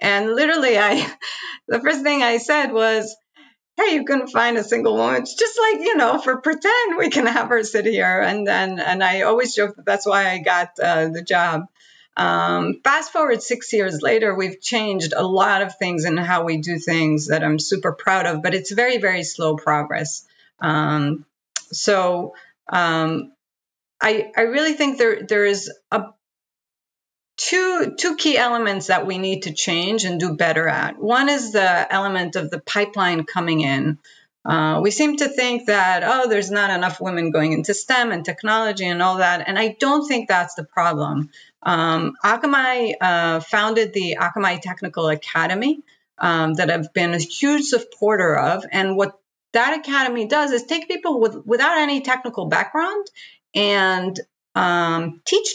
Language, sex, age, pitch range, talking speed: English, female, 40-59, 175-245 Hz, 175 wpm